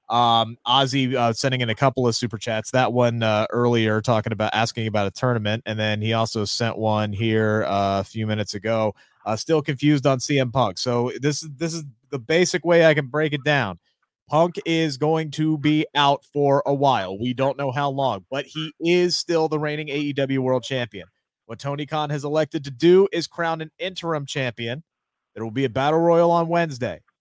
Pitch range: 125-160 Hz